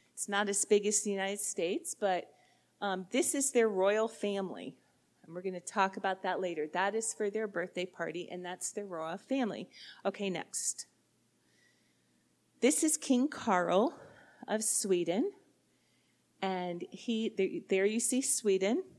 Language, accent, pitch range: English, American, 185-235 Hz